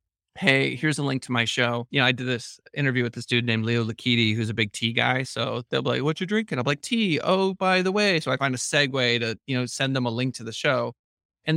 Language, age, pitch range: English, 20-39, 120-155 Hz